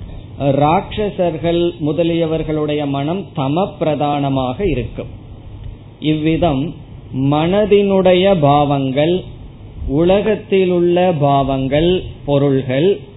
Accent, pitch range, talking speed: native, 130-165 Hz, 55 wpm